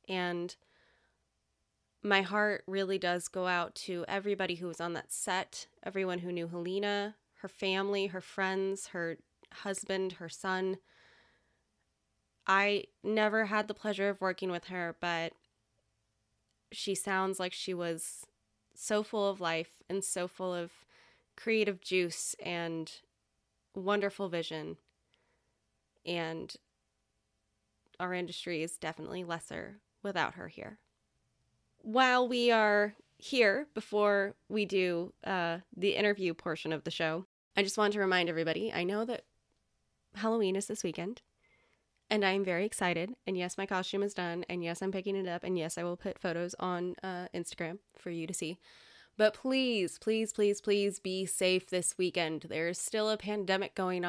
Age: 20-39